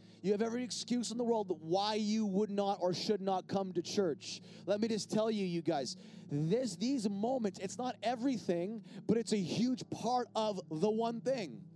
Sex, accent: male, American